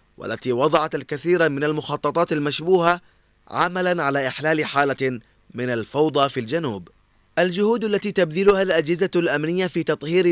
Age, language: 20-39, Arabic